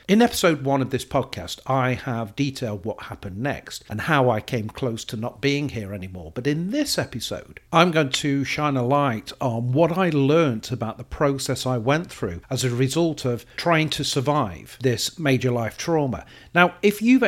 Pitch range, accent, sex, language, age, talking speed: 120-160 Hz, British, male, English, 40-59, 195 wpm